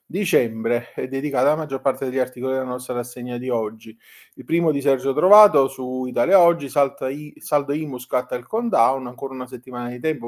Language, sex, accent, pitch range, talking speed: Italian, male, native, 120-150 Hz, 180 wpm